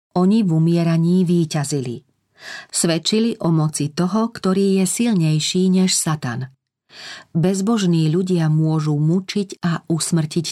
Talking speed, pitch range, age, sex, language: 110 wpm, 150-180 Hz, 40-59, female, Slovak